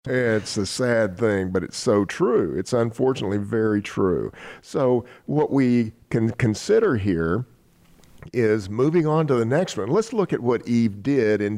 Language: English